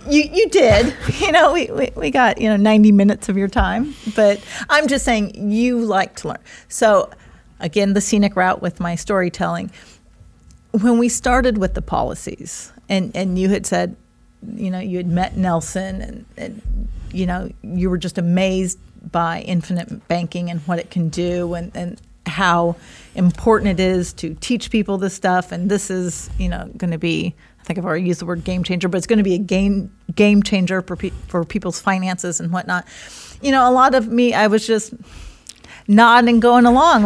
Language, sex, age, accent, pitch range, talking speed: English, female, 40-59, American, 180-230 Hz, 200 wpm